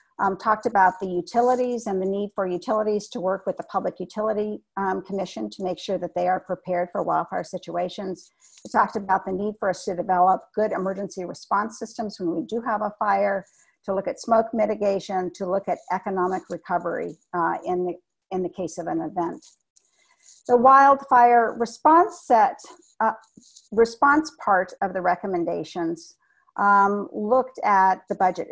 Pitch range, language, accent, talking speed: 180-225 Hz, English, American, 165 wpm